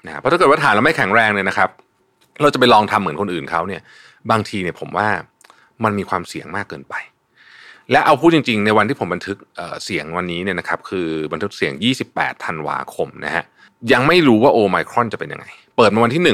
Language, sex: Thai, male